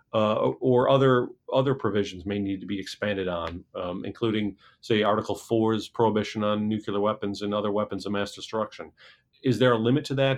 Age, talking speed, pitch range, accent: 40-59, 185 wpm, 105-125 Hz, American